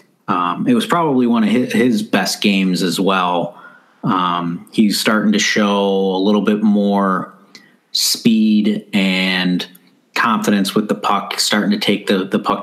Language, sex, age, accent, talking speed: English, male, 30-49, American, 150 wpm